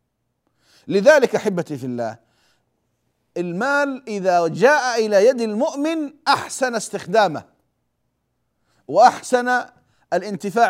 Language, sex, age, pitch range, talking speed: Arabic, male, 50-69, 180-260 Hz, 80 wpm